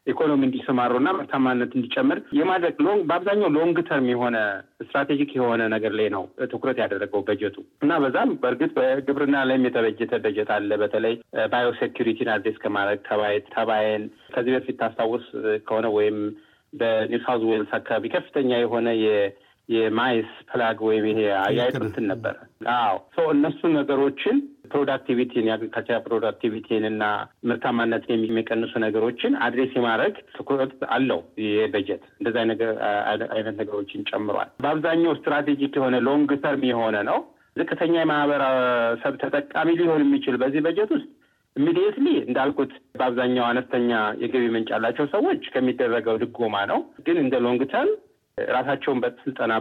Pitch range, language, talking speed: 110-145 Hz, Amharic, 115 wpm